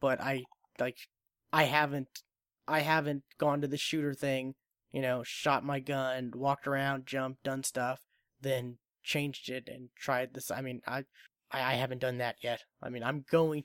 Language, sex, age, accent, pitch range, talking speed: English, male, 20-39, American, 125-150 Hz, 175 wpm